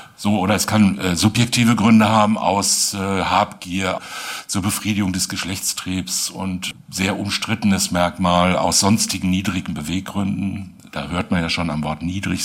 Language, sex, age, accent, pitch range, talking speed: German, male, 60-79, German, 90-105 Hz, 150 wpm